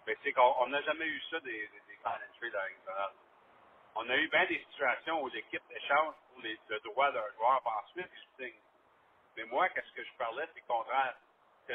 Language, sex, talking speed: French, male, 200 wpm